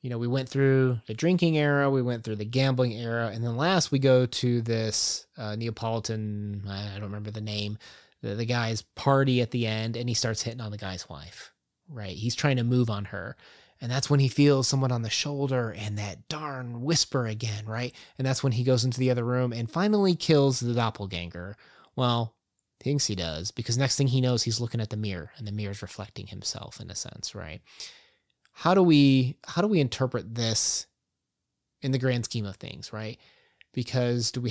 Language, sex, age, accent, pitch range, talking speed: English, male, 20-39, American, 110-135 Hz, 210 wpm